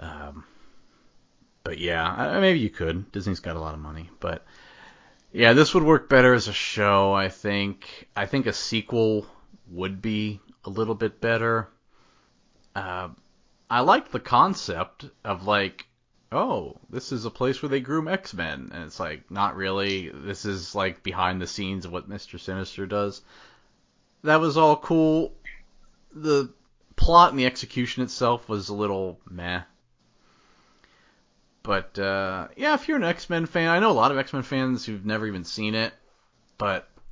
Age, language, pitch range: 30-49, English, 95-130 Hz